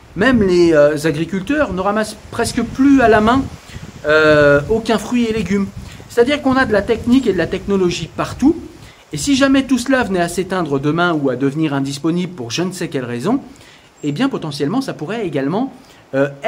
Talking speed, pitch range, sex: 195 wpm, 150-220 Hz, male